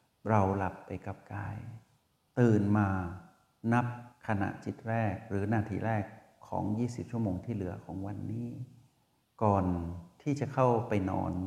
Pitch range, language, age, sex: 100-125 Hz, Thai, 60-79, male